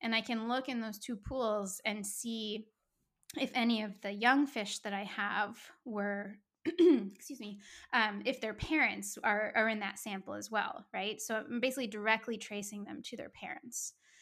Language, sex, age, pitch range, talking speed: English, female, 10-29, 205-240 Hz, 180 wpm